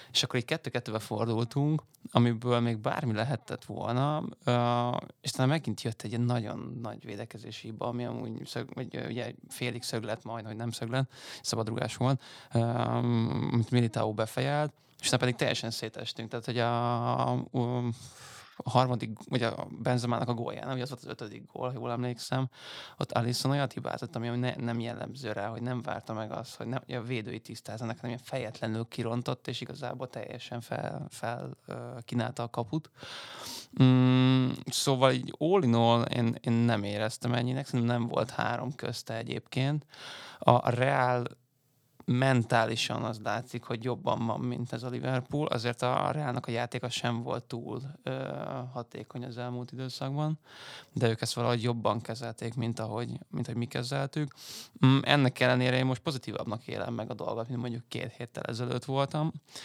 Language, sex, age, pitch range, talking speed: Hungarian, male, 20-39, 115-130 Hz, 160 wpm